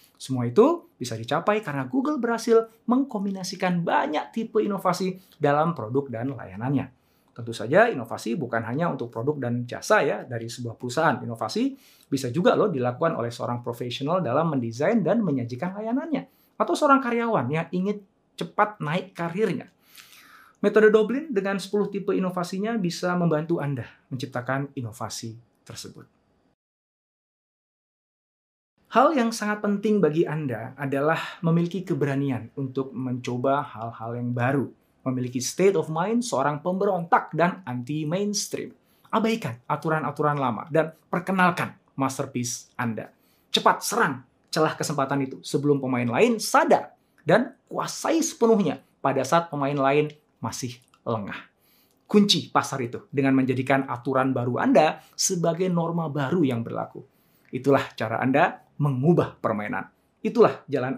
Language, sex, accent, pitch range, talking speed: Indonesian, male, native, 130-195 Hz, 125 wpm